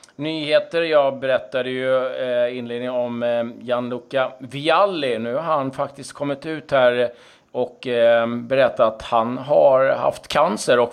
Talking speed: 150 wpm